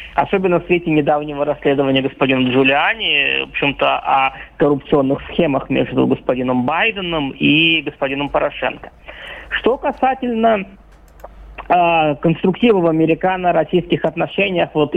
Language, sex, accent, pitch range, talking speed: Russian, male, native, 150-205 Hz, 105 wpm